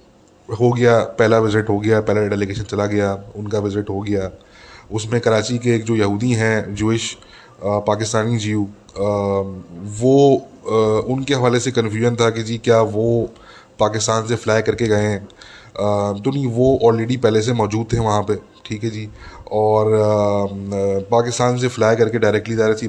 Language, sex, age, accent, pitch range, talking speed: English, male, 20-39, Indian, 105-120 Hz, 120 wpm